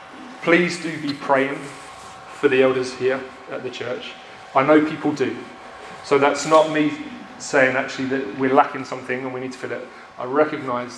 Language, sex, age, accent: English, male, 30-49, British